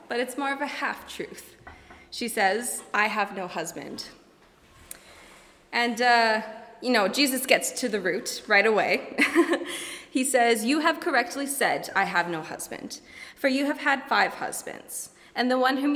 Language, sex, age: English, female, 20-39